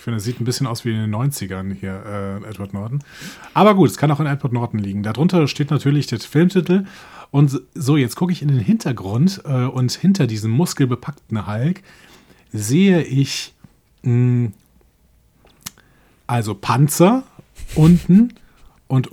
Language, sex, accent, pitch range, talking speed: German, male, German, 115-150 Hz, 155 wpm